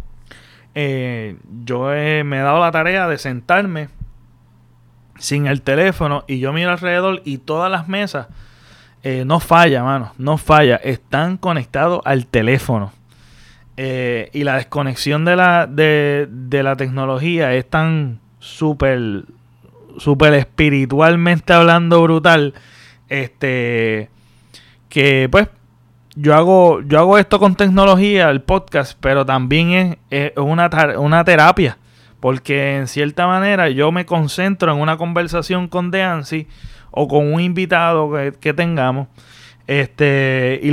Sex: male